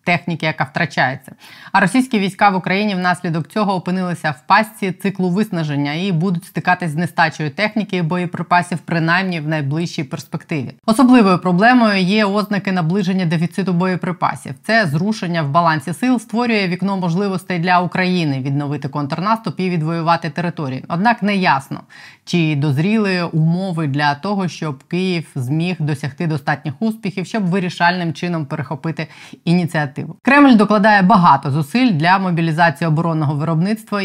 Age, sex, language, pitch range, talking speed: 20-39, female, Ukrainian, 155-190 Hz, 135 wpm